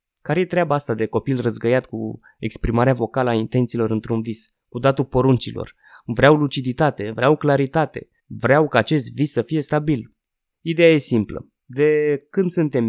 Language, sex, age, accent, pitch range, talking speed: Romanian, male, 20-39, native, 115-145 Hz, 160 wpm